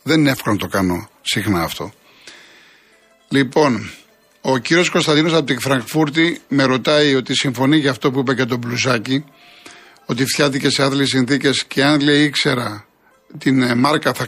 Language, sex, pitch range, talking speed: Greek, male, 110-140 Hz, 160 wpm